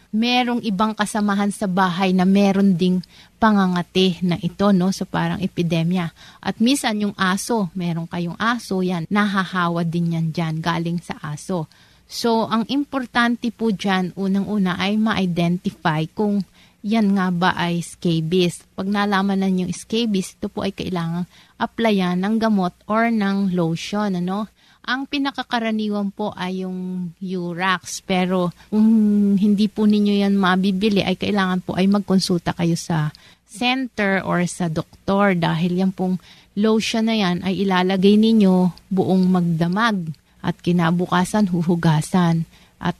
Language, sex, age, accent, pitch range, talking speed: Filipino, female, 30-49, native, 180-210 Hz, 135 wpm